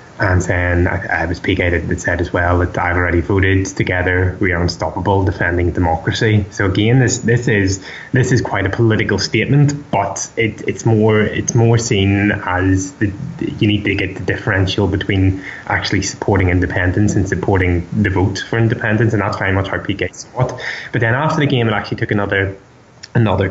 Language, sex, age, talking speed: English, male, 10-29, 190 wpm